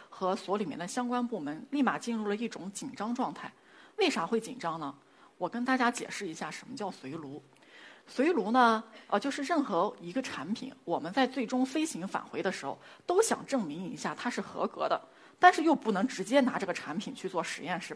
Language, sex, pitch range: Chinese, female, 185-275 Hz